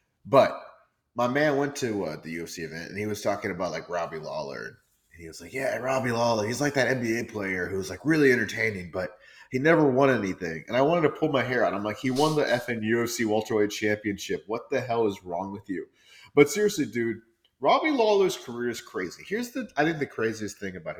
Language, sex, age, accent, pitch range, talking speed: English, male, 30-49, American, 105-140 Hz, 225 wpm